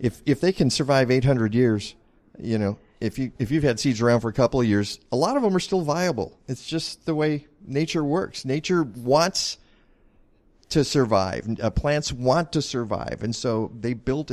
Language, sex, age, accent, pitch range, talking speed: English, male, 40-59, American, 100-130 Hz, 200 wpm